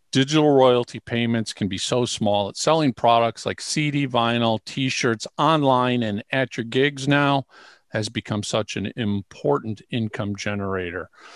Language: English